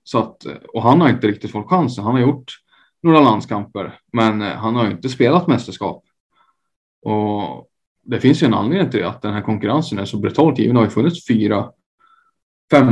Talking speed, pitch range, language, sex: 180 wpm, 105-125 Hz, Swedish, male